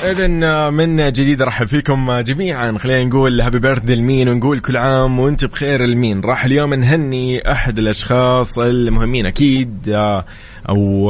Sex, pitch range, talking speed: male, 105-125 Hz, 135 wpm